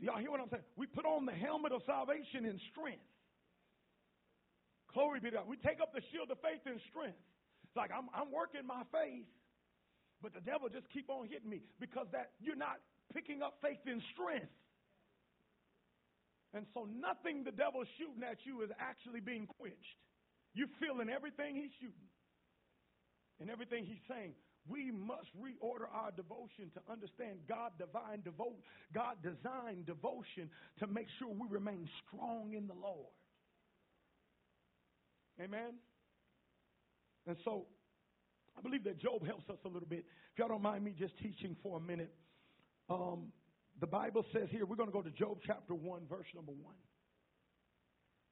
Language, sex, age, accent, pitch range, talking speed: English, male, 40-59, American, 185-255 Hz, 165 wpm